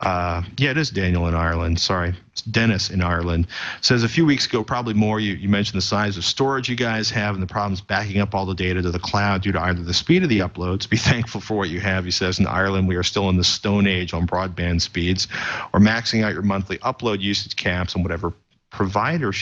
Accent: American